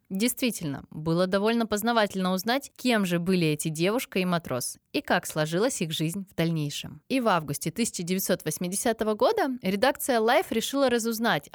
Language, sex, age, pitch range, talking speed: Russian, female, 20-39, 165-225 Hz, 145 wpm